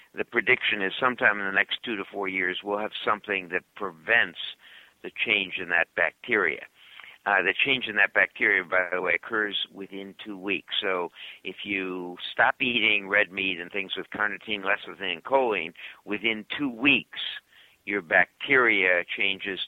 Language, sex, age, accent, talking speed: English, male, 60-79, American, 165 wpm